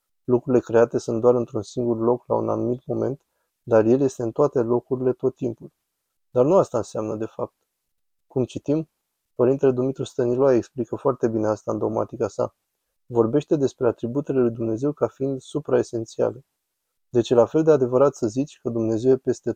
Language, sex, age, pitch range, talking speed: Romanian, male, 20-39, 115-140 Hz, 170 wpm